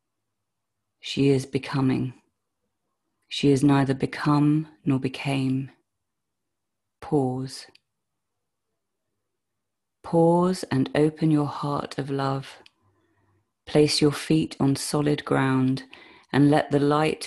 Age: 30-49